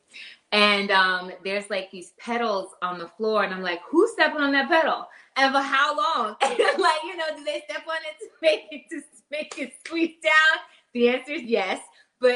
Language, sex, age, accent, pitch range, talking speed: English, female, 20-39, American, 180-245 Hz, 205 wpm